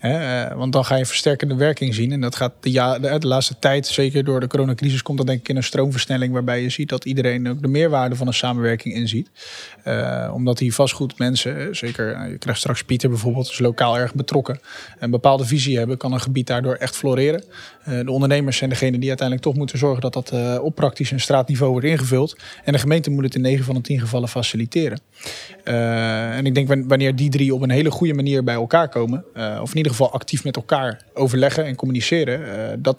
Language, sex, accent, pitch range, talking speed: Dutch, male, Dutch, 125-140 Hz, 215 wpm